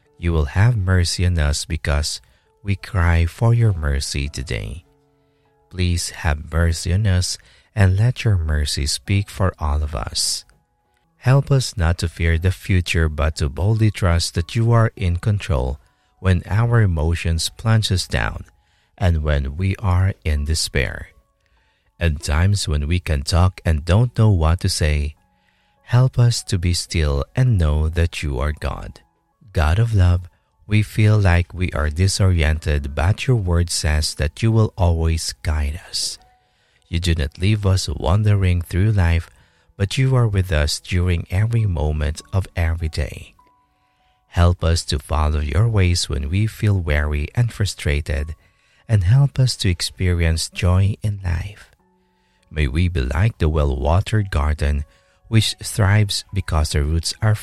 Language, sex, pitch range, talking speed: English, male, 80-105 Hz, 155 wpm